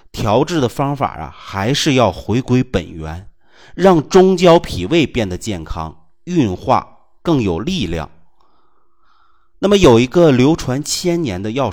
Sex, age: male, 30-49